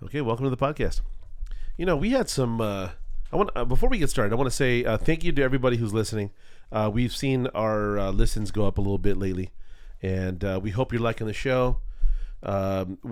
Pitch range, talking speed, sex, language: 105-135 Hz, 230 wpm, male, English